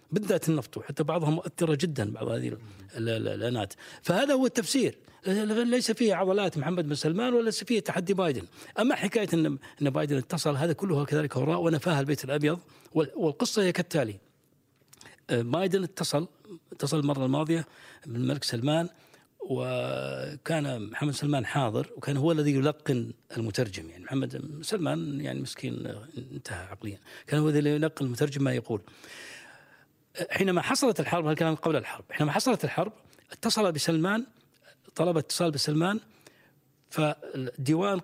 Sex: male